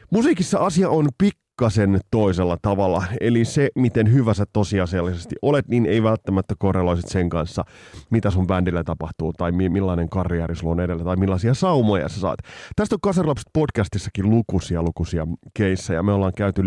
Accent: native